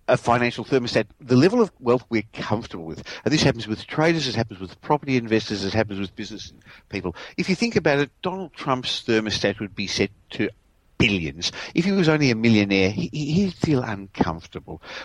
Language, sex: English, male